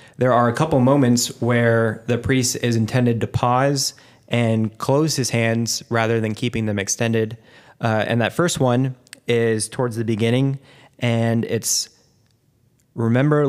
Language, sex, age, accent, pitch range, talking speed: English, male, 20-39, American, 110-125 Hz, 145 wpm